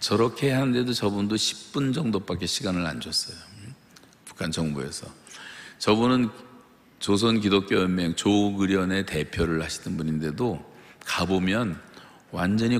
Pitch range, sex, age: 80-100 Hz, male, 50-69